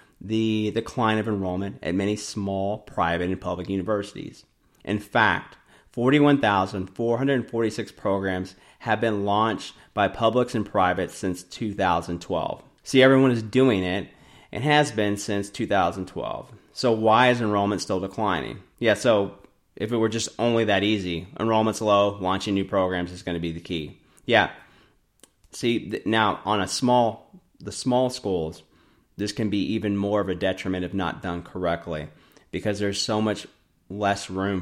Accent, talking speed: American, 155 wpm